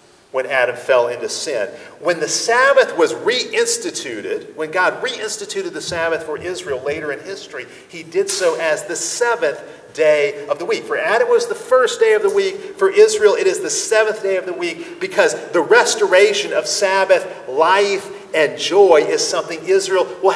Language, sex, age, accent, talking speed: English, male, 40-59, American, 185 wpm